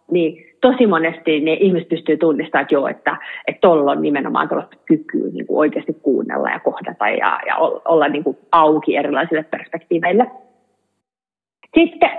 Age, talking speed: 30-49, 150 wpm